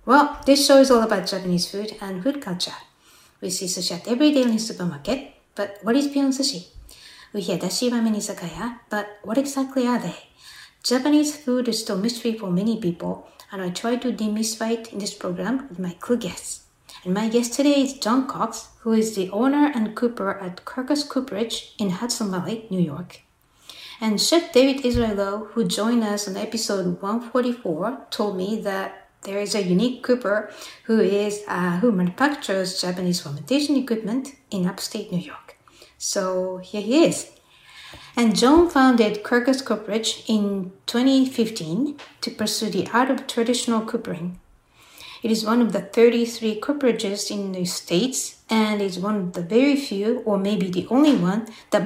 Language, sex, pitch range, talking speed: English, female, 195-245 Hz, 170 wpm